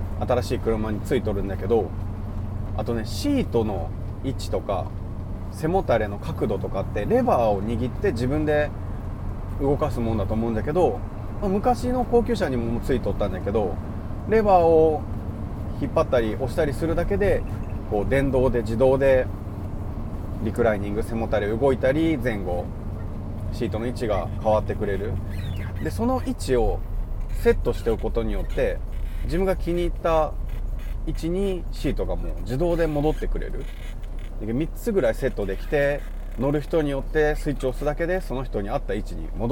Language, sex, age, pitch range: Japanese, male, 30-49, 100-140 Hz